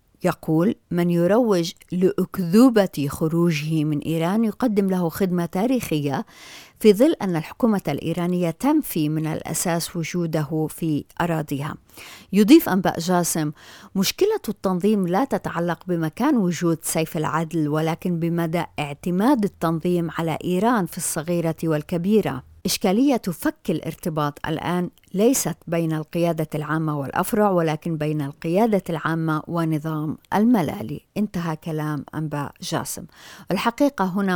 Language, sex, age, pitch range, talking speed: Arabic, female, 50-69, 160-200 Hz, 110 wpm